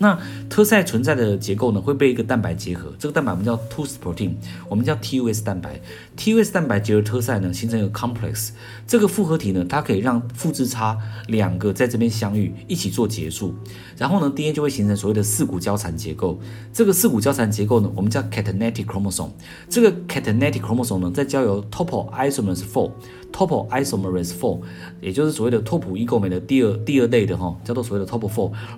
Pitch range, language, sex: 100-135 Hz, Chinese, male